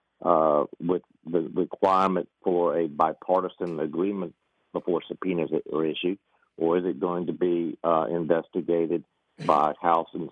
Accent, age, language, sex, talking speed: American, 50-69, English, male, 135 wpm